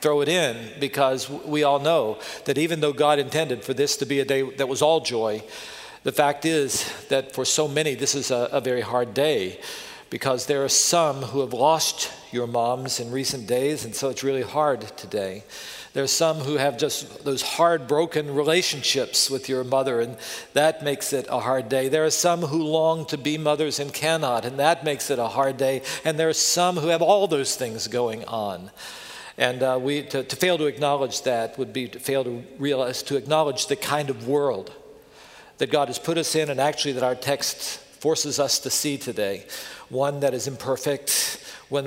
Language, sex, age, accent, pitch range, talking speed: English, male, 50-69, American, 130-150 Hz, 205 wpm